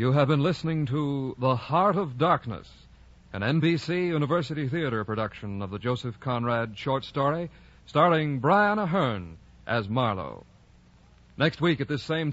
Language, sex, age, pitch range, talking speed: English, male, 50-69, 115-175 Hz, 145 wpm